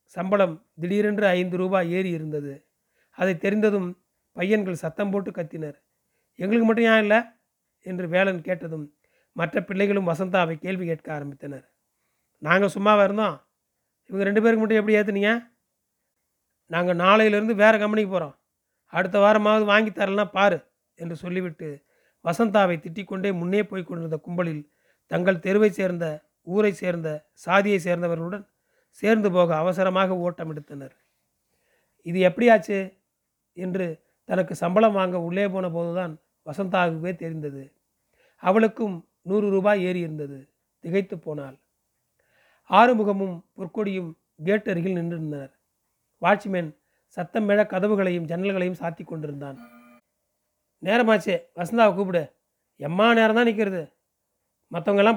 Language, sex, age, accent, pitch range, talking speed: Tamil, male, 30-49, native, 170-205 Hz, 110 wpm